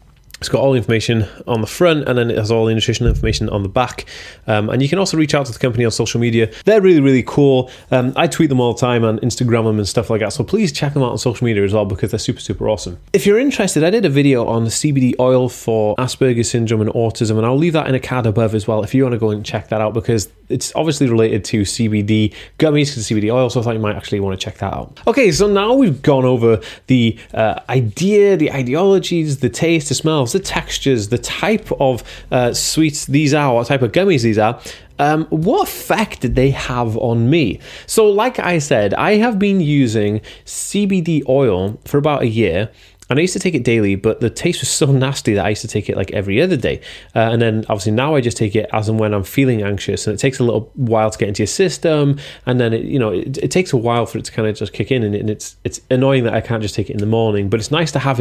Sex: male